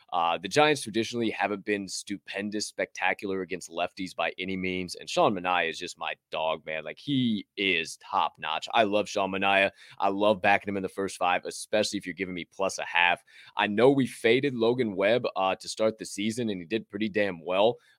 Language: English